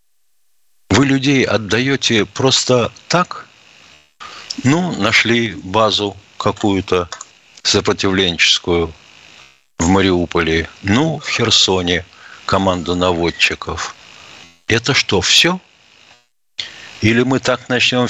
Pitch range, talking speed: 90-120 Hz, 80 wpm